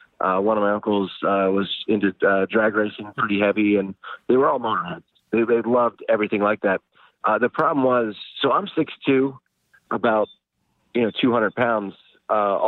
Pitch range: 100-115 Hz